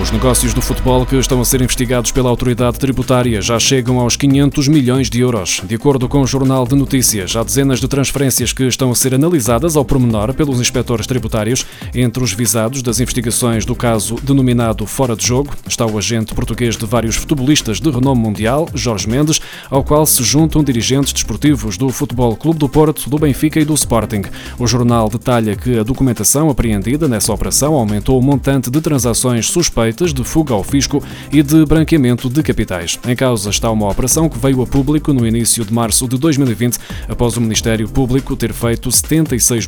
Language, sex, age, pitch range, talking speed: Portuguese, male, 20-39, 115-140 Hz, 190 wpm